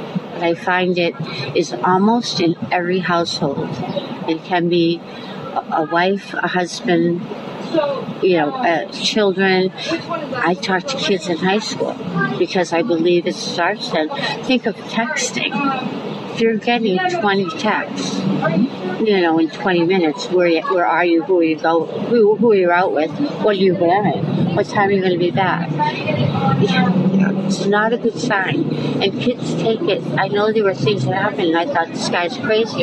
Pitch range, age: 170-215 Hz, 60-79